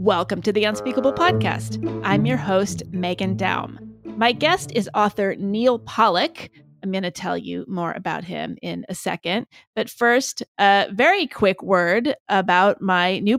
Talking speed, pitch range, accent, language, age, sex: 160 wpm, 180-240 Hz, American, English, 30-49, female